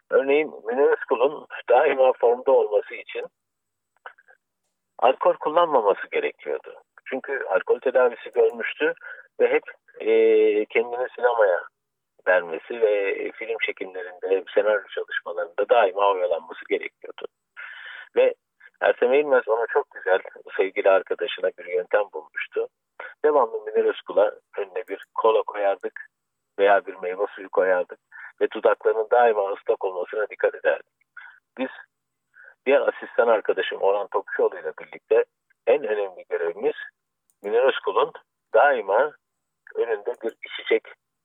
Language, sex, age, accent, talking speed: Turkish, male, 50-69, native, 105 wpm